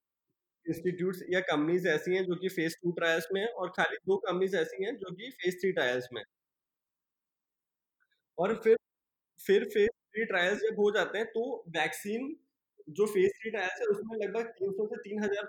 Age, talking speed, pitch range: 20-39, 165 wpm, 175-225 Hz